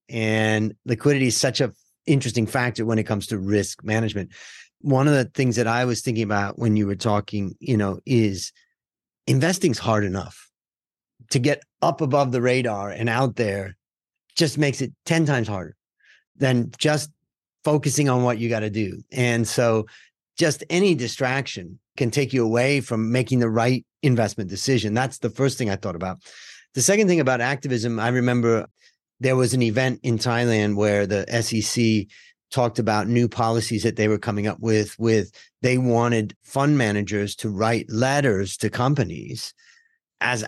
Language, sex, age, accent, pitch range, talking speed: English, male, 40-59, American, 110-140 Hz, 170 wpm